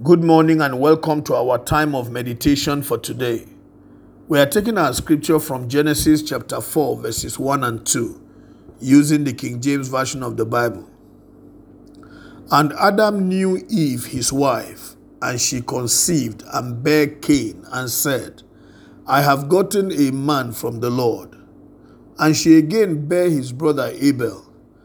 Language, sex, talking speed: English, male, 145 wpm